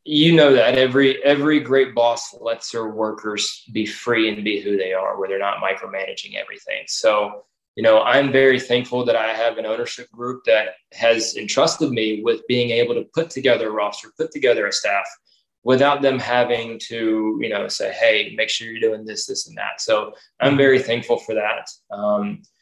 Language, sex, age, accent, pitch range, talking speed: English, male, 20-39, American, 110-135 Hz, 195 wpm